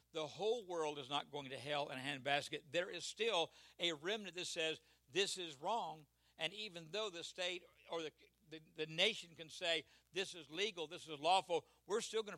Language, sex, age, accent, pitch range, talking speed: English, male, 60-79, American, 155-175 Hz, 205 wpm